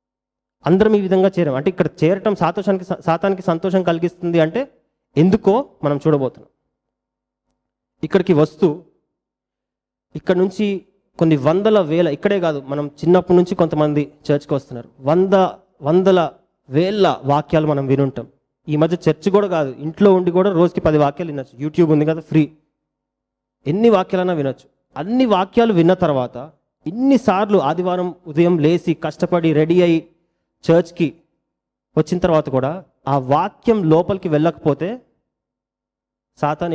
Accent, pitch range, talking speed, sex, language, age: native, 155-195 Hz, 120 wpm, male, Telugu, 30-49